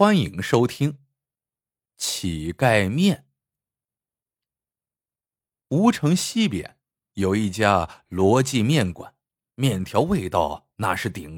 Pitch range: 110-180 Hz